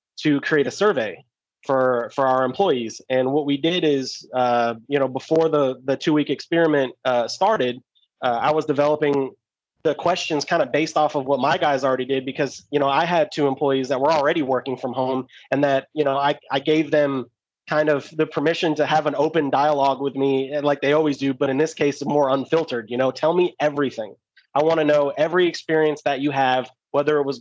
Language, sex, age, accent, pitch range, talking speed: English, male, 30-49, American, 130-150 Hz, 215 wpm